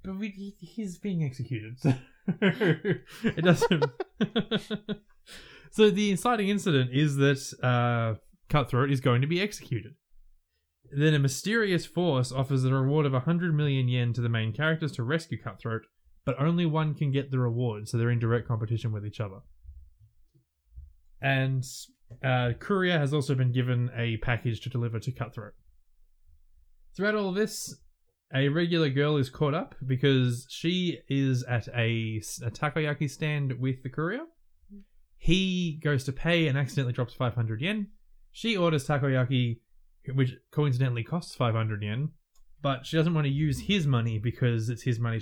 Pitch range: 115-160 Hz